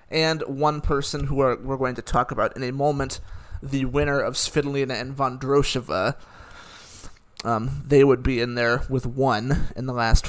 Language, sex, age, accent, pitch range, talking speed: English, male, 30-49, American, 130-155 Hz, 170 wpm